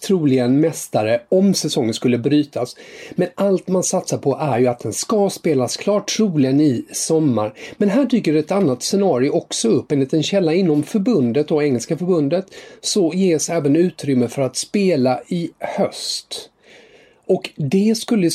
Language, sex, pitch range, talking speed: English, male, 135-190 Hz, 165 wpm